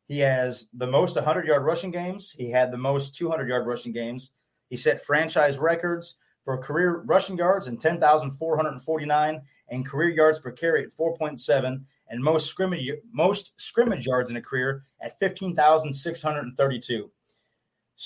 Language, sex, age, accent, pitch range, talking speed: English, male, 30-49, American, 125-165 Hz, 175 wpm